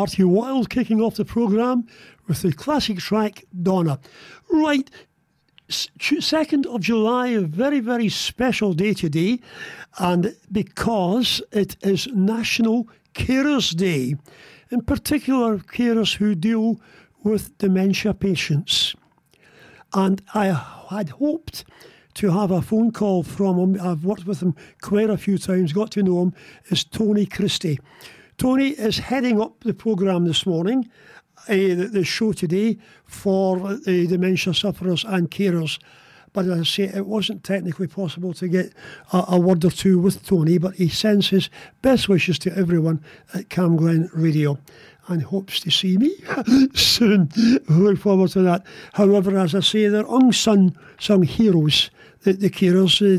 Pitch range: 180-220 Hz